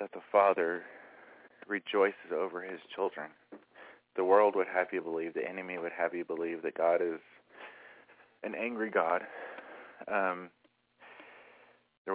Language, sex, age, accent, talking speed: English, male, 20-39, American, 135 wpm